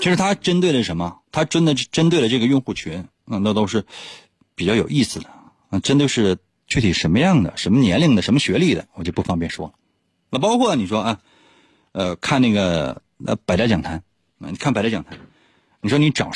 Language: Chinese